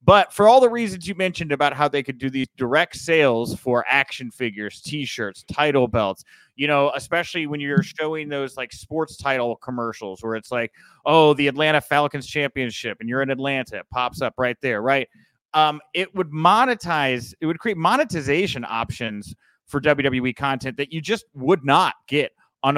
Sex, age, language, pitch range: male, 30-49, English, 125-160 Hz